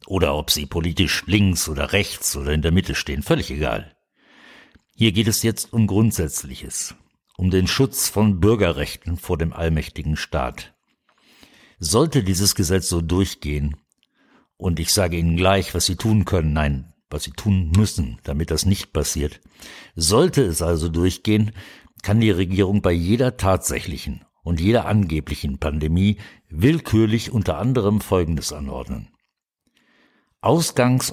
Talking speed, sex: 140 wpm, male